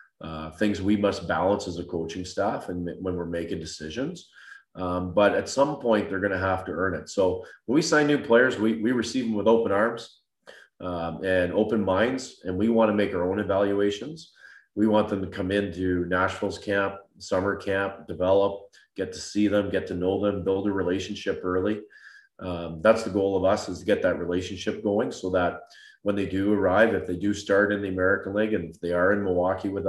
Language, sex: English, male